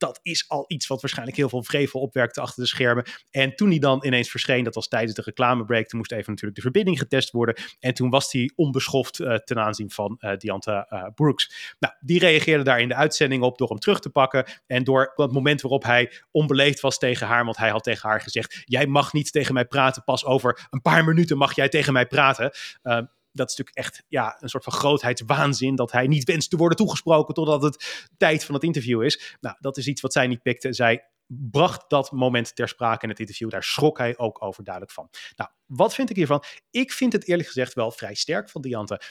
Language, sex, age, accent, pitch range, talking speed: Dutch, male, 30-49, Dutch, 125-170 Hz, 235 wpm